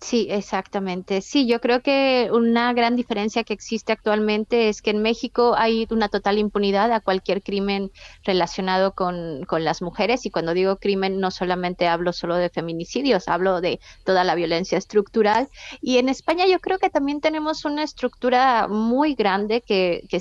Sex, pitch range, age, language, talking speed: female, 180-220 Hz, 20-39, Spanish, 170 wpm